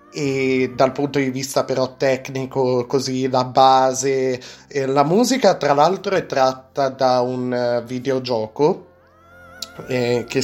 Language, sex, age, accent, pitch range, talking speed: Italian, male, 30-49, native, 130-165 Hz, 120 wpm